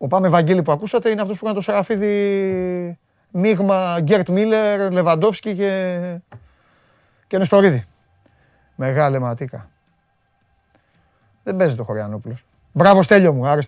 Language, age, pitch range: Greek, 30-49, 110-175 Hz